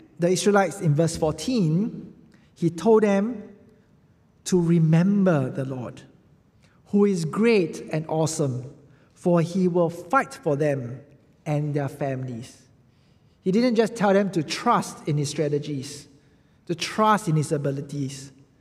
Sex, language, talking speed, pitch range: male, English, 130 wpm, 140-185 Hz